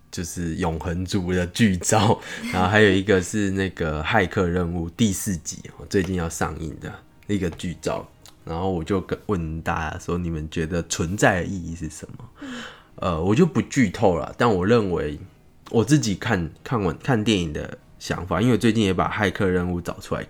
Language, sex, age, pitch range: Chinese, male, 20-39, 85-110 Hz